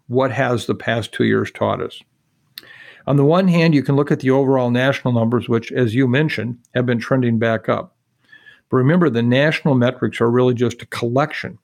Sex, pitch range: male, 120-140 Hz